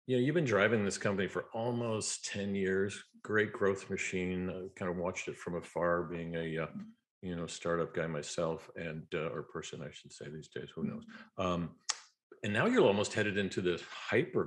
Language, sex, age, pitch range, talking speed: English, male, 40-59, 85-105 Hz, 205 wpm